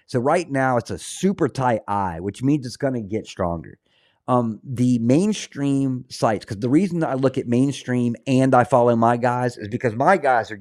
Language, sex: English, male